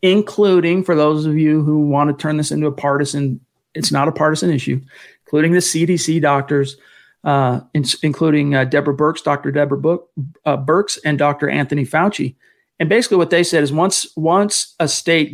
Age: 40-59